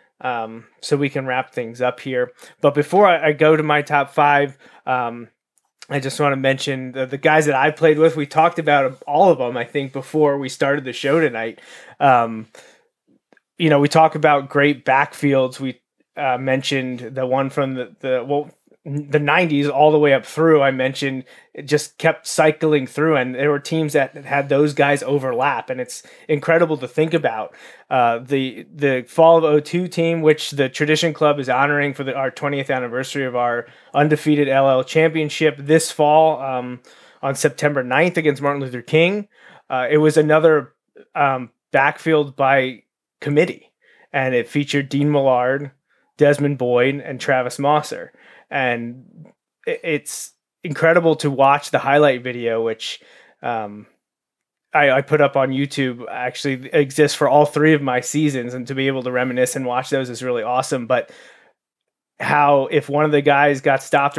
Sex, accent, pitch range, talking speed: male, American, 130-150 Hz, 175 wpm